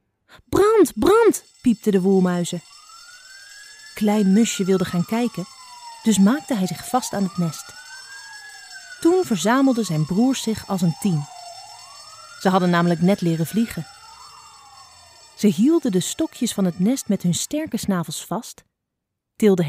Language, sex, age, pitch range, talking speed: Dutch, female, 30-49, 175-255 Hz, 135 wpm